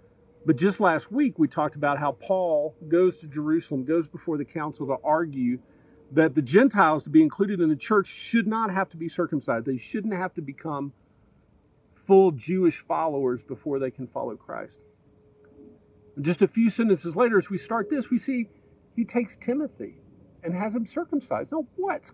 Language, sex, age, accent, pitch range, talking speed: English, male, 50-69, American, 135-210 Hz, 180 wpm